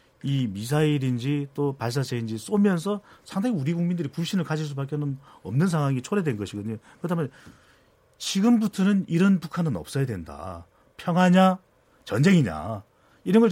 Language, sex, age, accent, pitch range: Korean, male, 40-59, native, 125-180 Hz